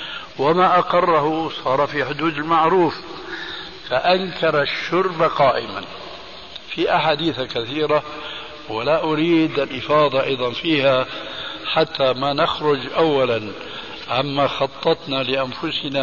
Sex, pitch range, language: male, 135-165 Hz, Arabic